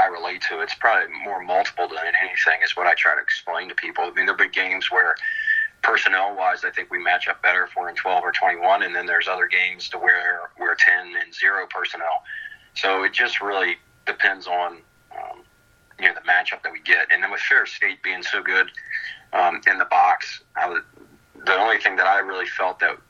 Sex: male